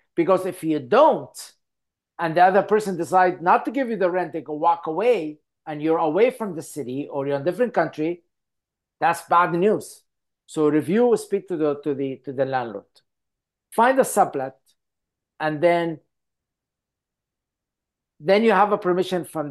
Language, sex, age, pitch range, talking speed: English, male, 50-69, 150-190 Hz, 170 wpm